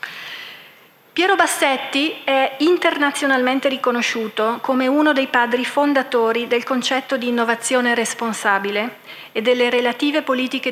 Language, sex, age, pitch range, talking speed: Italian, female, 40-59, 220-260 Hz, 105 wpm